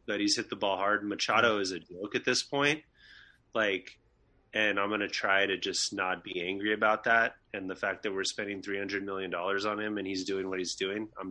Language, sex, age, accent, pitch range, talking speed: English, male, 20-39, American, 100-125 Hz, 230 wpm